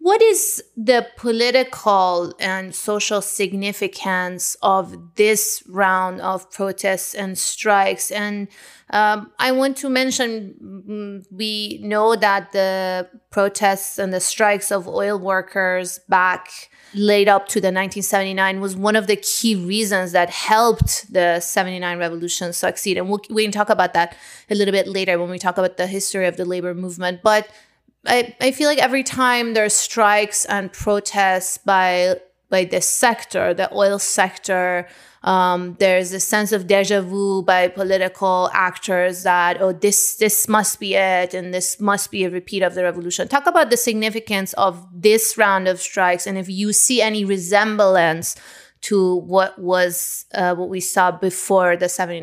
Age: 20-39